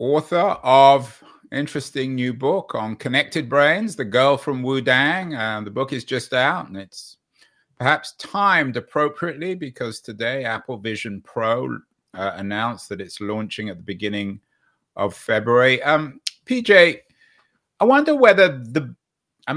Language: English